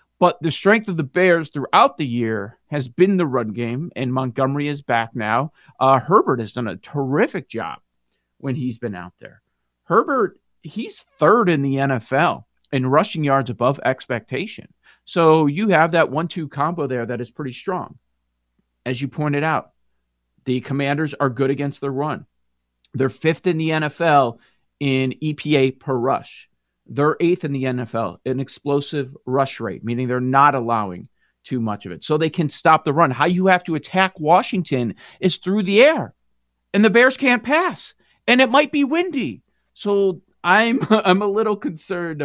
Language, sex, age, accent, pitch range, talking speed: English, male, 40-59, American, 125-175 Hz, 175 wpm